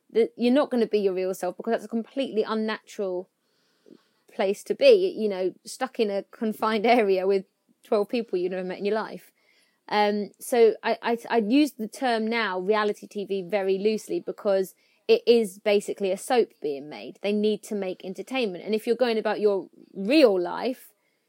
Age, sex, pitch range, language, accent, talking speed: 30-49, female, 195-235 Hz, English, British, 185 wpm